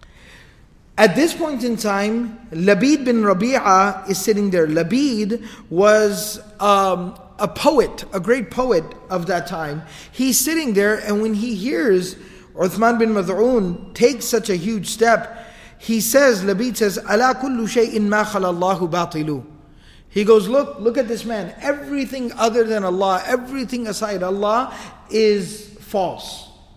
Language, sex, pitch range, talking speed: English, male, 200-240 Hz, 135 wpm